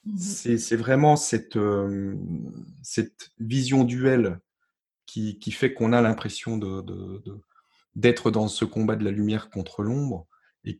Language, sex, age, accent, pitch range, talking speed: French, male, 30-49, French, 110-145 Hz, 150 wpm